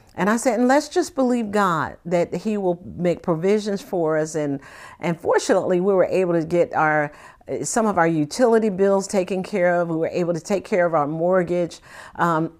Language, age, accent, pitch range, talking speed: English, 50-69, American, 180-260 Hz, 200 wpm